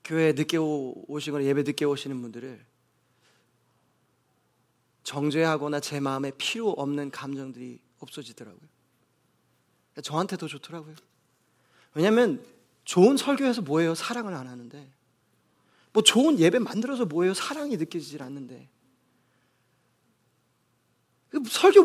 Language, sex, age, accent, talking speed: English, male, 30-49, Korean, 95 wpm